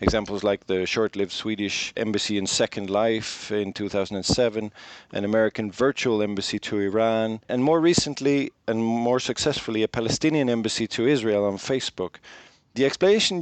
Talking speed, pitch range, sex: 145 wpm, 105-130 Hz, male